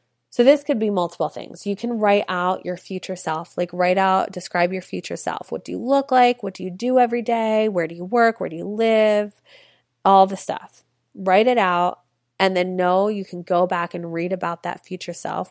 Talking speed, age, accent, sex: 225 wpm, 20-39, American, female